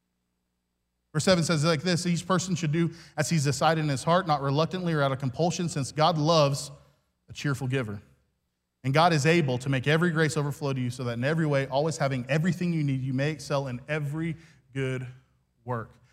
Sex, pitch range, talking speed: male, 130-185 Hz, 205 wpm